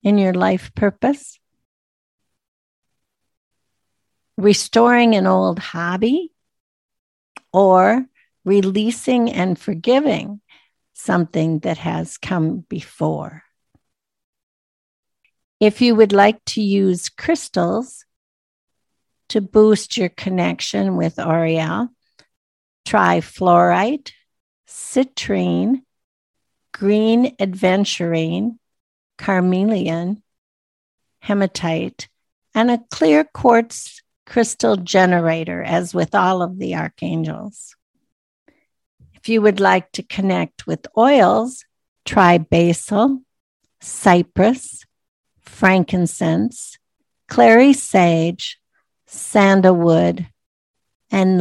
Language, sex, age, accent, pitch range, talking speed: English, female, 60-79, American, 165-225 Hz, 75 wpm